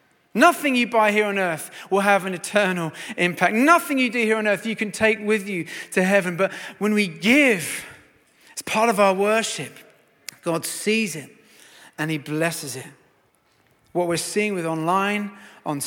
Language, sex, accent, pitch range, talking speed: English, male, British, 150-205 Hz, 175 wpm